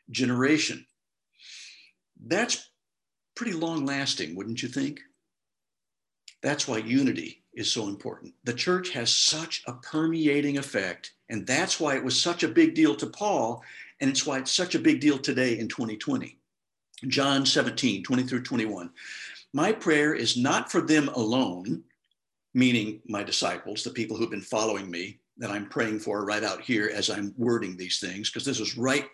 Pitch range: 115-155 Hz